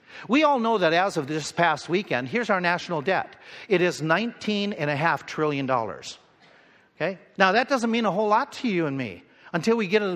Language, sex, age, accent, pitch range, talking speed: English, male, 50-69, American, 150-210 Hz, 195 wpm